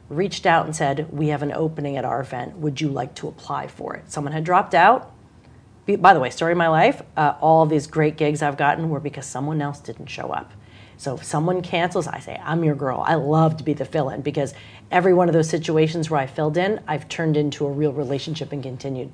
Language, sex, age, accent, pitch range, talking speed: English, female, 40-59, American, 140-180 Hz, 240 wpm